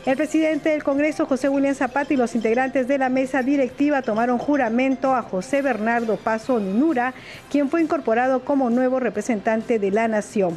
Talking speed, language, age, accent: 170 wpm, Spanish, 50-69, American